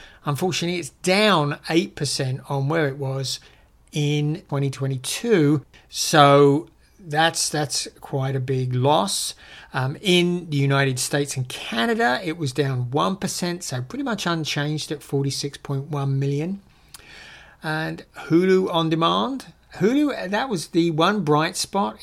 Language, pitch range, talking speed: English, 135-170 Hz, 125 wpm